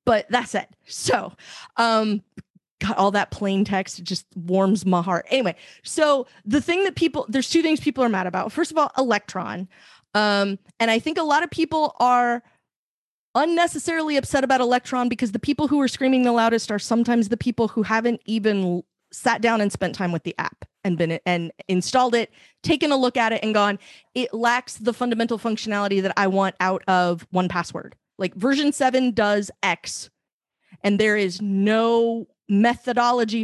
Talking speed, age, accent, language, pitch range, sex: 185 wpm, 30-49, American, English, 200-265 Hz, female